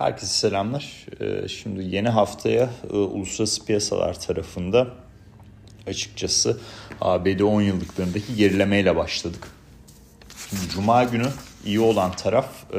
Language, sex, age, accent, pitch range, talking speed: Turkish, male, 40-59, native, 90-115 Hz, 95 wpm